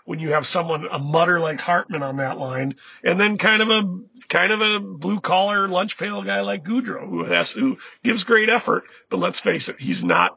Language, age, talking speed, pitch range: English, 40-59, 210 wpm, 175-225 Hz